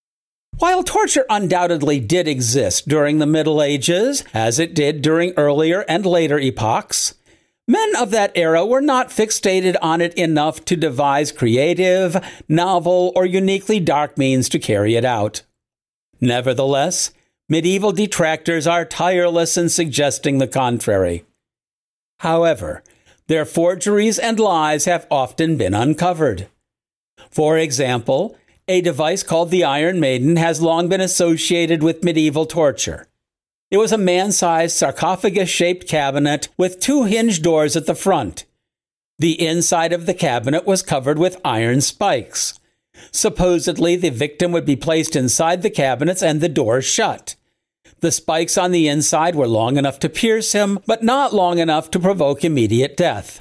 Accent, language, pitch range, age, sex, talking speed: American, English, 145-185 Hz, 50-69, male, 145 wpm